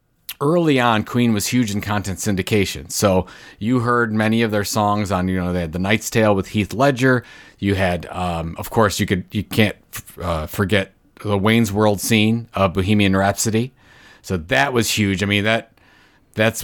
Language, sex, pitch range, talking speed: English, male, 95-120 Hz, 190 wpm